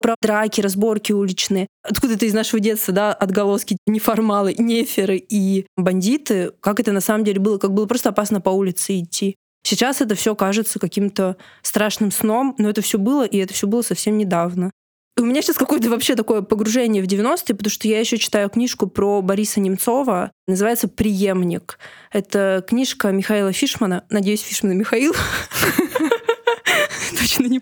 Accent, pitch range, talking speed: native, 195-230 Hz, 160 wpm